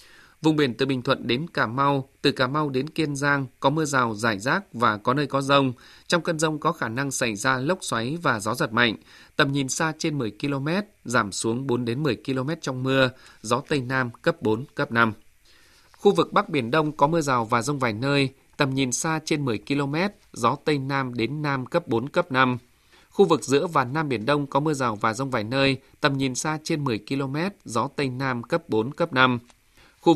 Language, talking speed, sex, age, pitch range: Vietnamese, 225 wpm, male, 20-39, 125-155 Hz